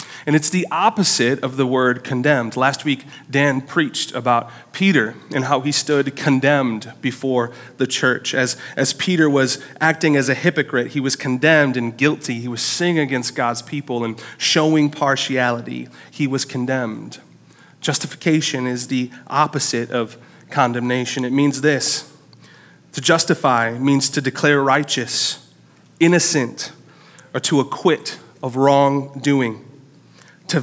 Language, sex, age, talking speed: English, male, 30-49, 135 wpm